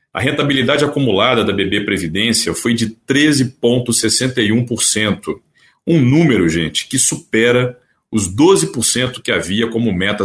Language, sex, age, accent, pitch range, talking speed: Portuguese, male, 40-59, Brazilian, 105-140 Hz, 115 wpm